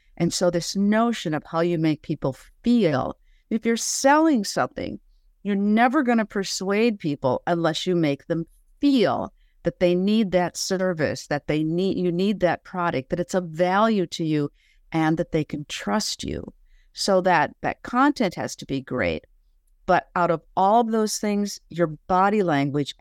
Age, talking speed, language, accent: 50-69, 175 wpm, English, American